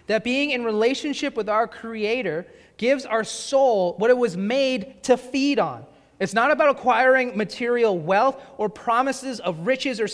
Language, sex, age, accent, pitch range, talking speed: English, male, 30-49, American, 200-260 Hz, 165 wpm